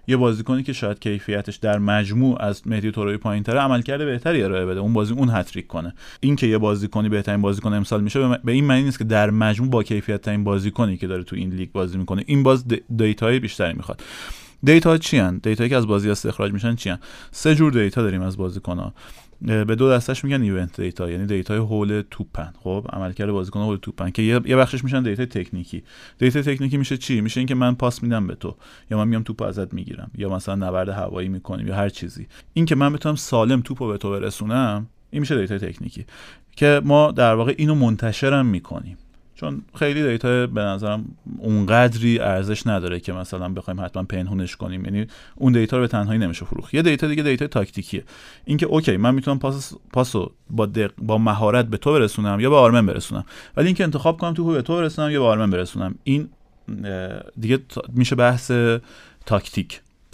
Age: 30-49